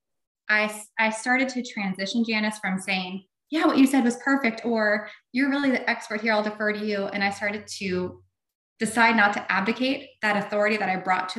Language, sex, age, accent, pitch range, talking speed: English, female, 20-39, American, 205-255 Hz, 200 wpm